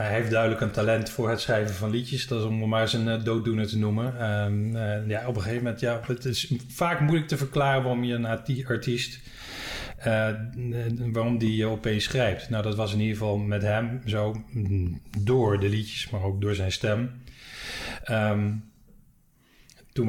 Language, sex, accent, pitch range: Dutch, male, Dutch, 105-125 Hz